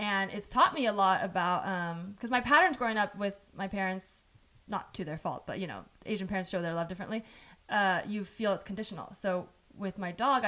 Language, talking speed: English, 220 wpm